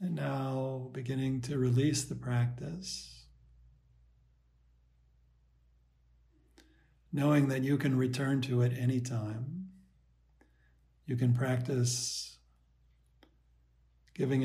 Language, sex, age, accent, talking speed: Swedish, male, 60-79, American, 80 wpm